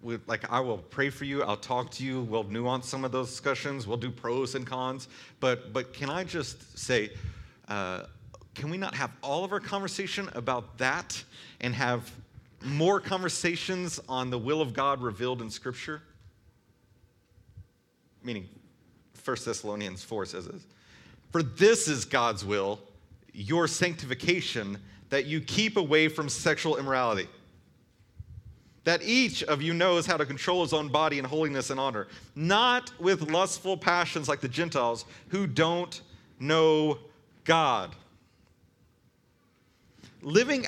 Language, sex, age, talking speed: English, male, 40-59, 145 wpm